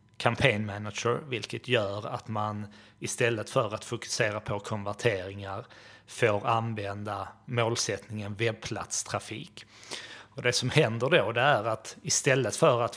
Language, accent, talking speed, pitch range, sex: Swedish, native, 115 wpm, 105-125 Hz, male